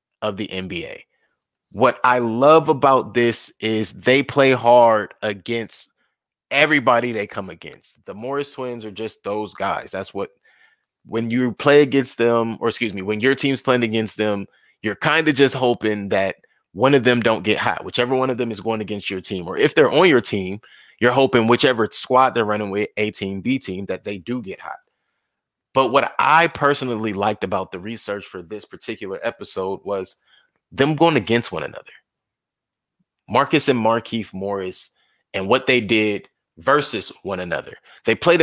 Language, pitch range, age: English, 105-135 Hz, 20-39